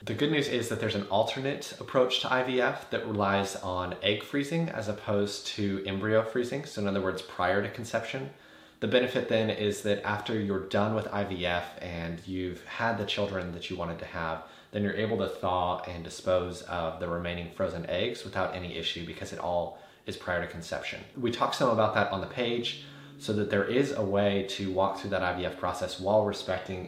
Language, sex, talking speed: English, male, 205 wpm